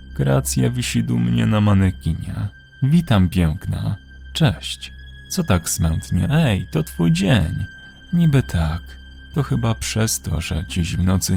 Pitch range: 80-120 Hz